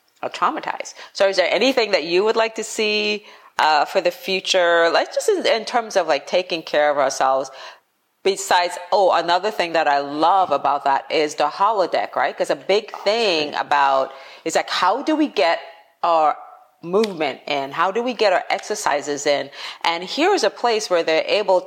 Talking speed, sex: 185 wpm, female